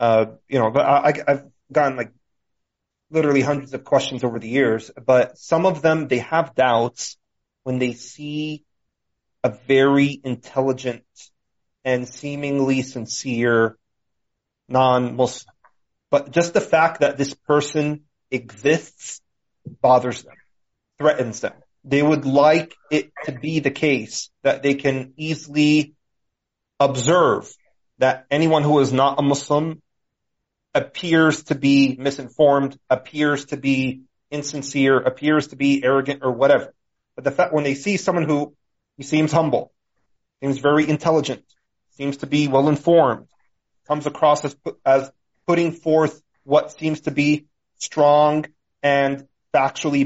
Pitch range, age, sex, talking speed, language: 130-150 Hz, 30-49, male, 130 wpm, English